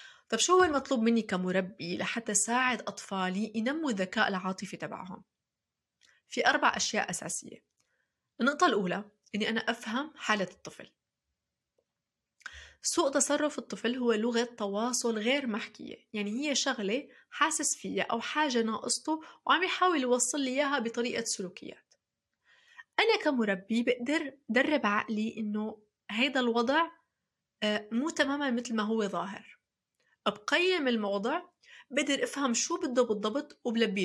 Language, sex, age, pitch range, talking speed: Arabic, female, 20-39, 210-285 Hz, 120 wpm